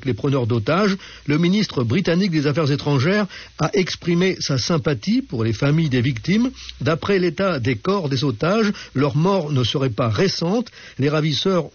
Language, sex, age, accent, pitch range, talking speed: French, male, 60-79, French, 110-150 Hz, 165 wpm